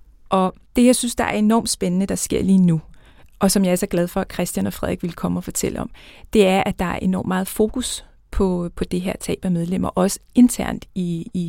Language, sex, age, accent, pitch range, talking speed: Danish, female, 30-49, native, 175-210 Hz, 245 wpm